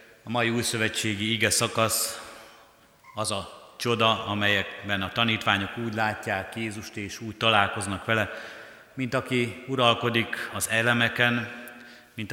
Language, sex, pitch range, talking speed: Hungarian, male, 100-115 Hz, 120 wpm